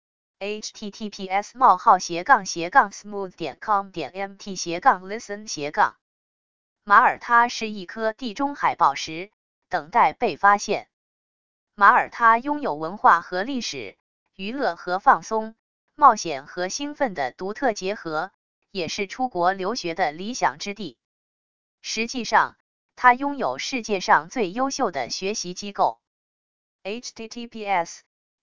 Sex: female